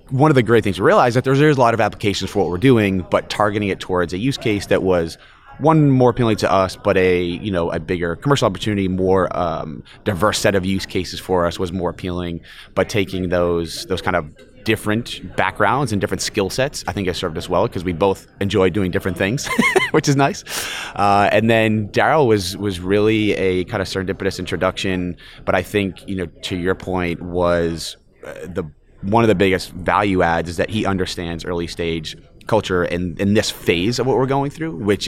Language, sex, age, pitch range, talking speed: English, male, 30-49, 85-105 Hz, 215 wpm